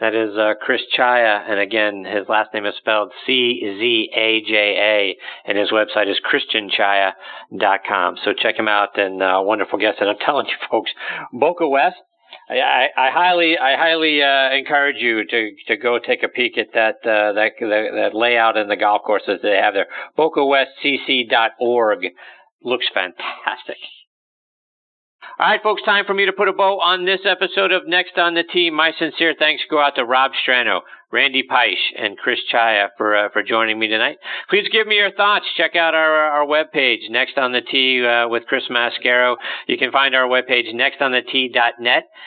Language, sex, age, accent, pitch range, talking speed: English, male, 50-69, American, 110-155 Hz, 185 wpm